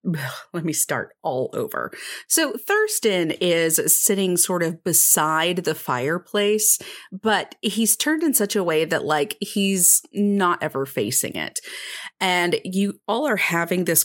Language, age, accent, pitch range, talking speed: English, 30-49, American, 155-195 Hz, 145 wpm